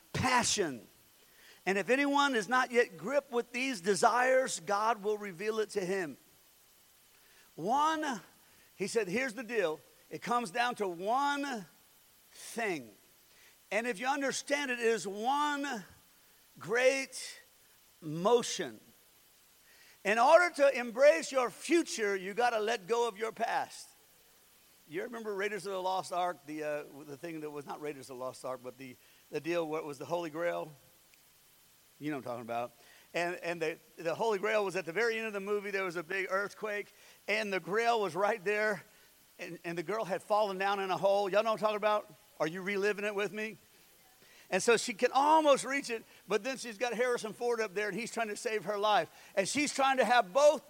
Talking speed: 190 wpm